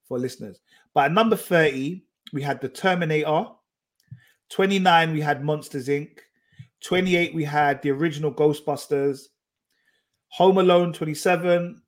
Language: English